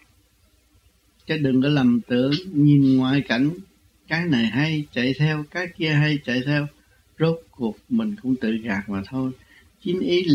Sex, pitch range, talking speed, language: male, 100-150 Hz, 160 wpm, Vietnamese